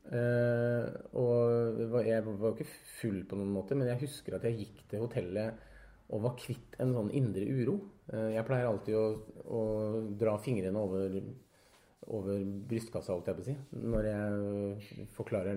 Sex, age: male, 30-49